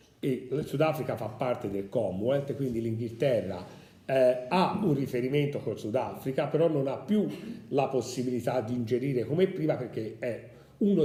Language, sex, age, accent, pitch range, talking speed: Italian, male, 40-59, native, 125-180 Hz, 145 wpm